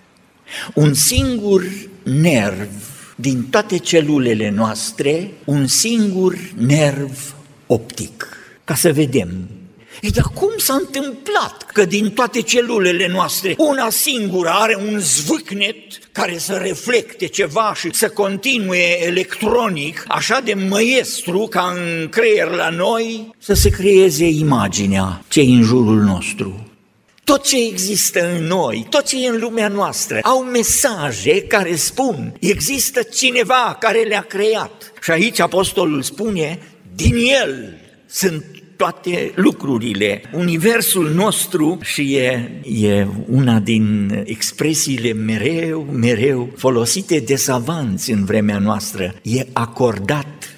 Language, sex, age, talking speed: Romanian, male, 50-69, 115 wpm